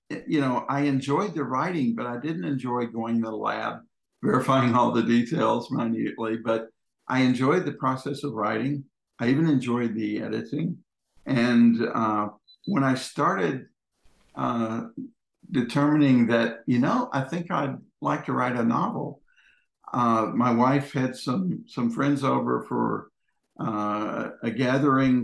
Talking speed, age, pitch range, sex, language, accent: 145 wpm, 60-79, 115-140 Hz, male, English, American